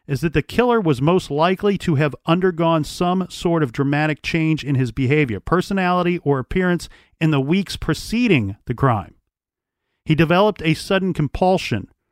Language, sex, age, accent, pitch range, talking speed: English, male, 40-59, American, 135-180 Hz, 160 wpm